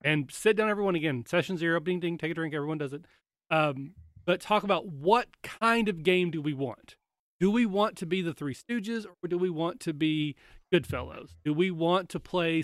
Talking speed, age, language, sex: 225 wpm, 30-49, English, male